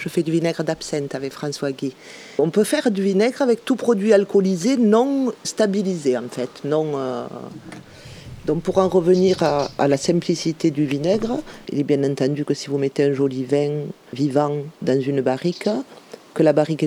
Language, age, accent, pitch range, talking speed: French, 40-59, French, 140-185 Hz, 180 wpm